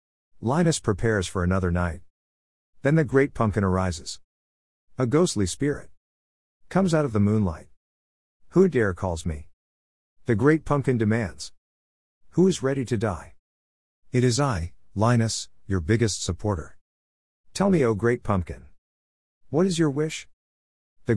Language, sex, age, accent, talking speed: English, male, 50-69, American, 140 wpm